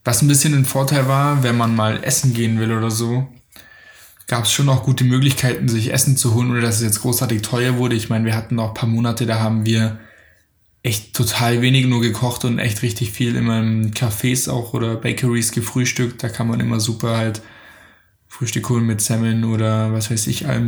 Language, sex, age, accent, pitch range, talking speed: German, male, 10-29, German, 110-120 Hz, 210 wpm